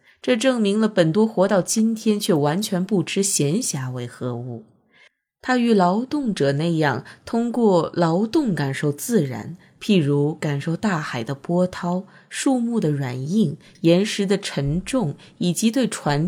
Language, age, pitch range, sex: Chinese, 20-39, 145-210 Hz, female